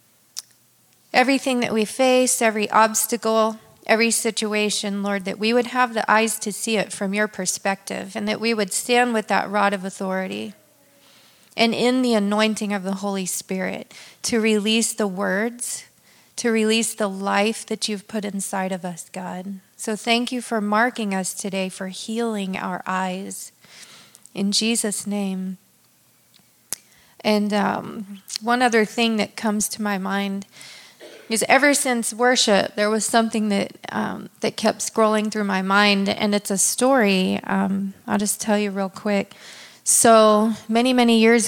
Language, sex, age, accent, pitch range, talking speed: English, female, 40-59, American, 195-225 Hz, 155 wpm